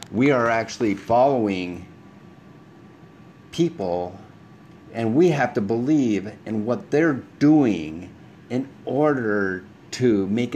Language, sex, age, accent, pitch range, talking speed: English, male, 50-69, American, 105-135 Hz, 100 wpm